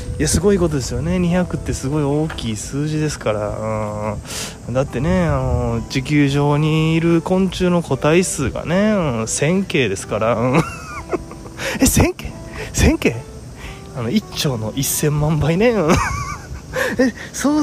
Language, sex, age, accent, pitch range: Japanese, male, 20-39, native, 125-190 Hz